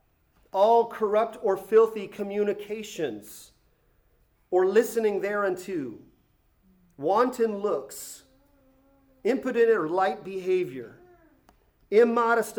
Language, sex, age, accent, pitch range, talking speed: English, male, 40-59, American, 175-230 Hz, 70 wpm